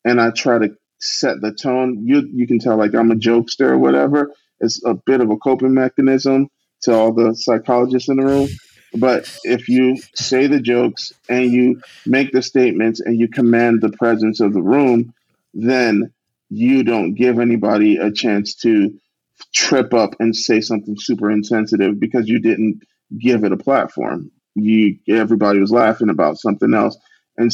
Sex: male